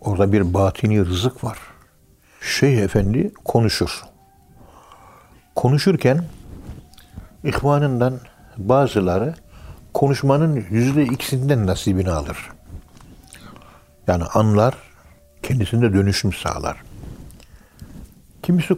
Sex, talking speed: male, 70 wpm